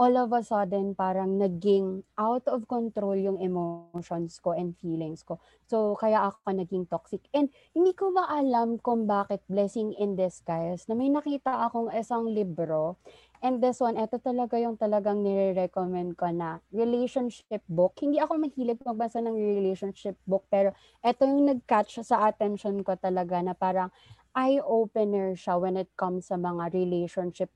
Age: 20-39